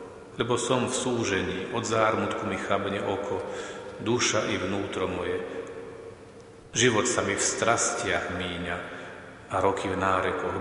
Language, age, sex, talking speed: Slovak, 40-59, male, 130 wpm